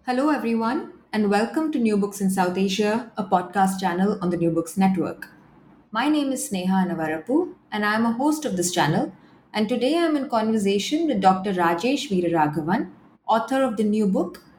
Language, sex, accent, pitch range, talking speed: English, female, Indian, 170-225 Hz, 180 wpm